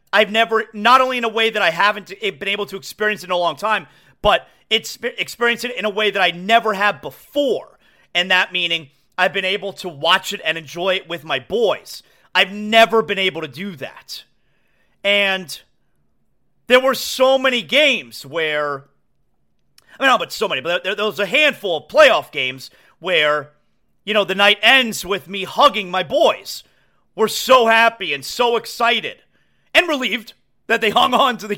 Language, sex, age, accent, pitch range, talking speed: English, male, 40-59, American, 175-230 Hz, 190 wpm